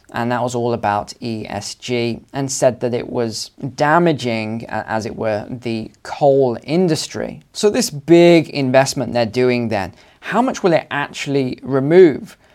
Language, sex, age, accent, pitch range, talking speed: English, male, 20-39, British, 115-155 Hz, 150 wpm